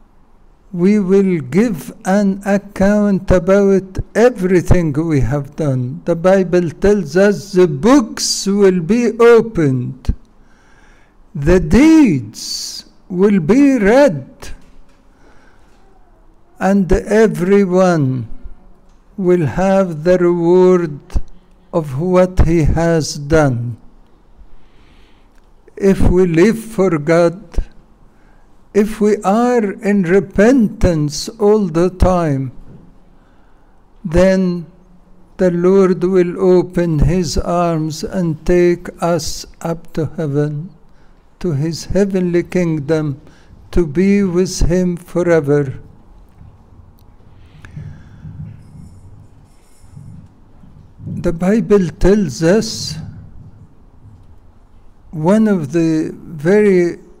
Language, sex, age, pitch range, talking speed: English, male, 60-79, 150-195 Hz, 80 wpm